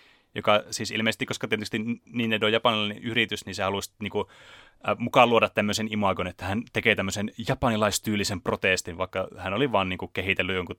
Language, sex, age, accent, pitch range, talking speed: Finnish, male, 30-49, native, 95-120 Hz, 185 wpm